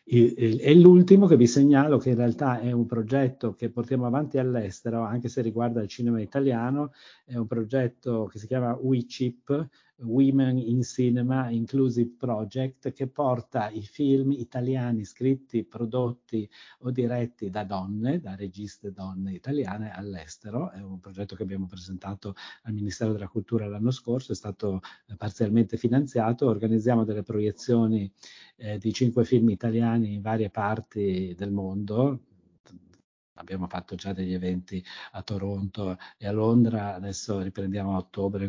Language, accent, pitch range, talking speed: Italian, native, 100-120 Hz, 145 wpm